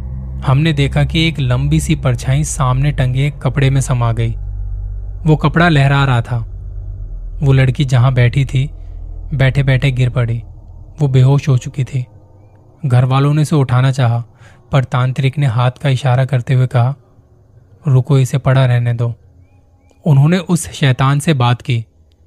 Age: 20-39